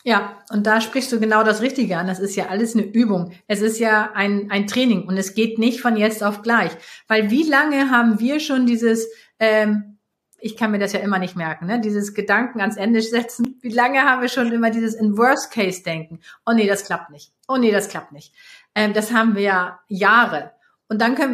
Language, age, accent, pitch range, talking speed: German, 30-49, German, 200-240 Hz, 230 wpm